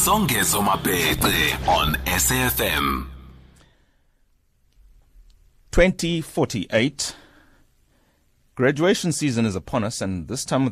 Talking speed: 65 wpm